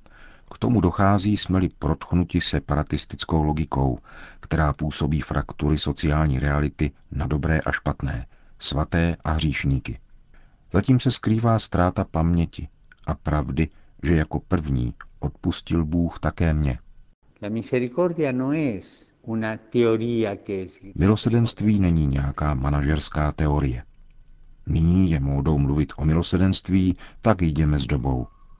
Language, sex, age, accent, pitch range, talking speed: Czech, male, 50-69, native, 75-90 Hz, 100 wpm